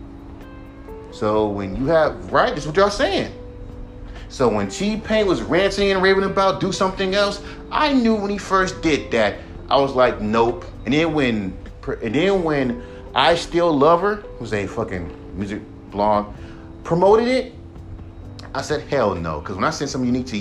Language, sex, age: English, male, 30-49